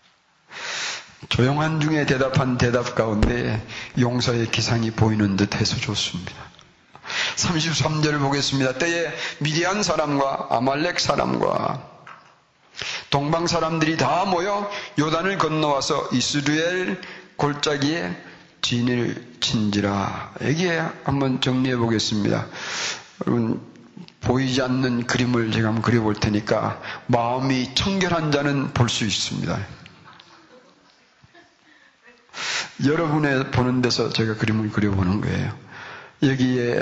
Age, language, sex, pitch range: 40-59, Korean, male, 120-155 Hz